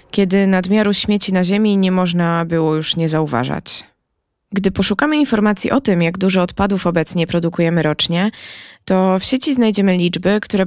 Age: 20-39